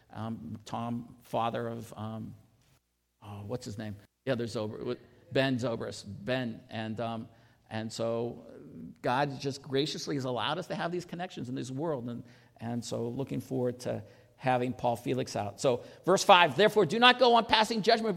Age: 50-69